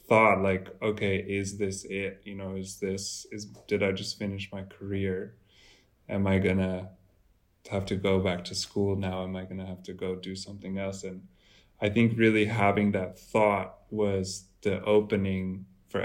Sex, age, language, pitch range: male, 20-39, English, 95-100 Hz